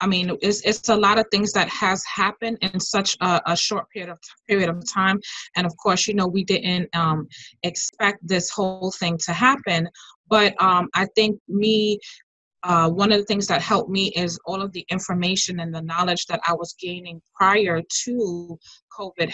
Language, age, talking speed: English, 20-39, 195 wpm